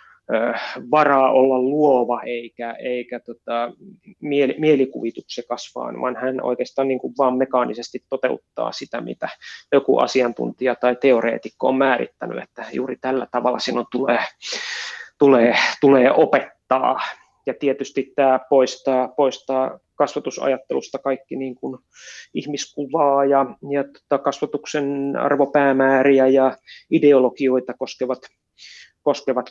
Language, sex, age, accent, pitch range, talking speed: Finnish, male, 20-39, native, 125-145 Hz, 110 wpm